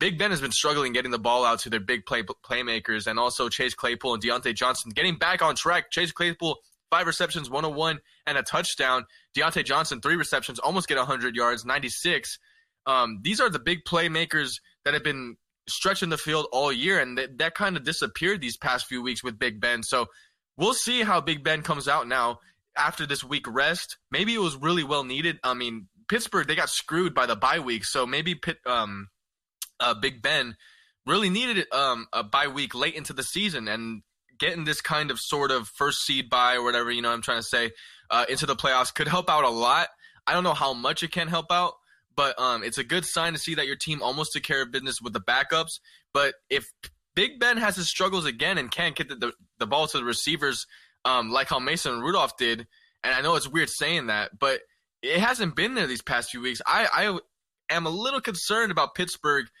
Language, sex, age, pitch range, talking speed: English, male, 20-39, 125-180 Hz, 220 wpm